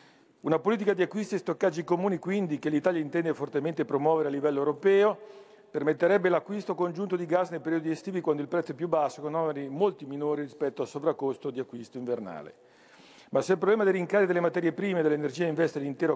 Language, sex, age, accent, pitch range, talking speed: Italian, male, 50-69, native, 150-190 Hz, 195 wpm